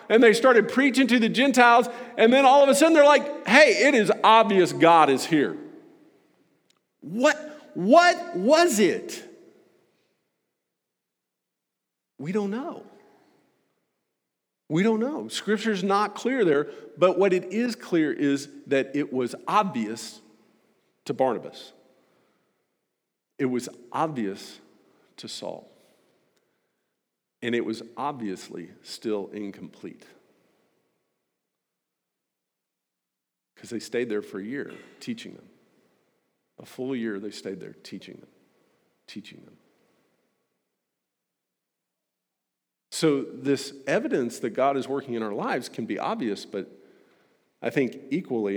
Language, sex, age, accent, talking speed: English, male, 50-69, American, 115 wpm